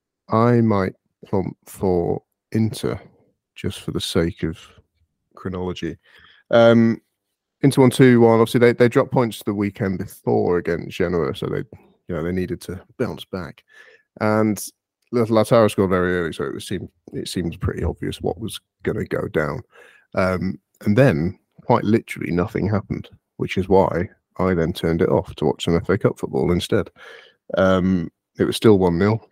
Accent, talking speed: British, 160 wpm